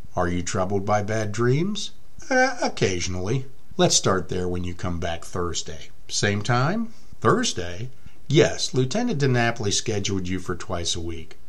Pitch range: 90-125 Hz